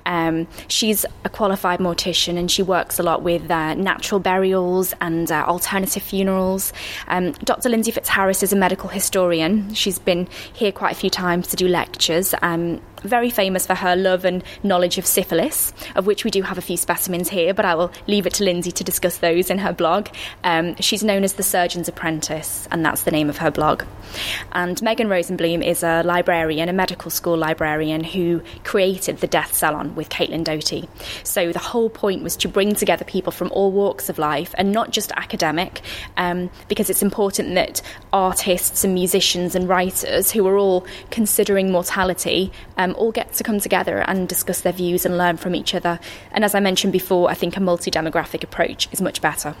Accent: British